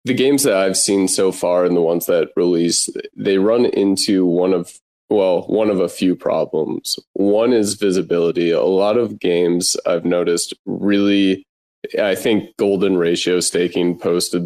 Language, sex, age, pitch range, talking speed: English, male, 20-39, 90-100 Hz, 160 wpm